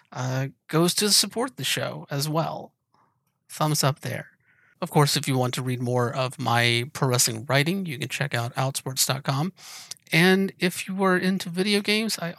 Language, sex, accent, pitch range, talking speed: English, male, American, 130-160 Hz, 175 wpm